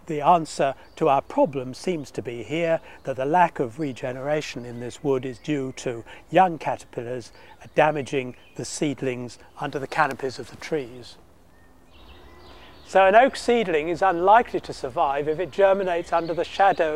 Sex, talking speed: male, 160 wpm